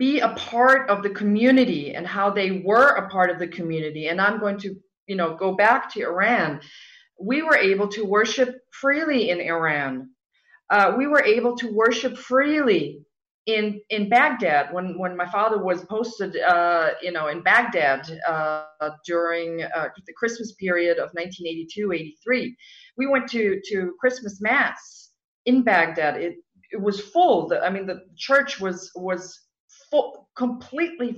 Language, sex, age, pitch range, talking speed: English, female, 40-59, 180-240 Hz, 155 wpm